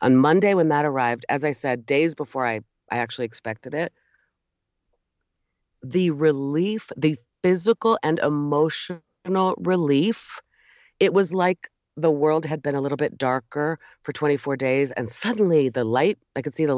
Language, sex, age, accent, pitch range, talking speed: English, female, 30-49, American, 135-185 Hz, 155 wpm